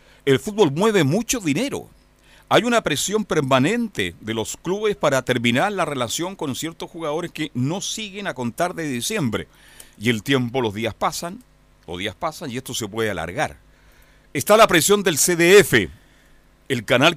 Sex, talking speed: male, 165 wpm